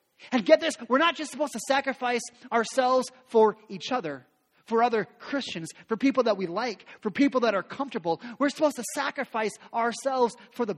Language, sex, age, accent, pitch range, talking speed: English, male, 30-49, American, 195-270 Hz, 185 wpm